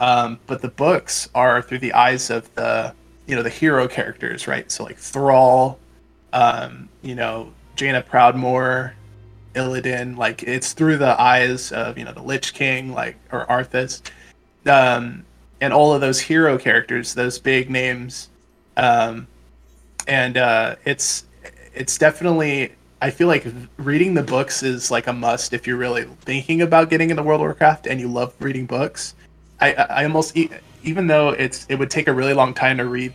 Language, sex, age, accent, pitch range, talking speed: English, male, 20-39, American, 120-135 Hz, 170 wpm